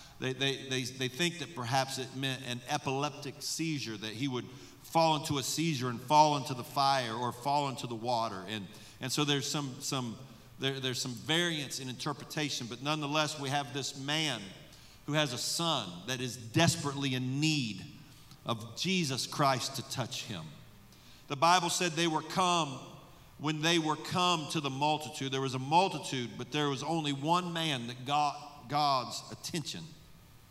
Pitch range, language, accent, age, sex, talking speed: 130-160 Hz, English, American, 50-69, male, 175 wpm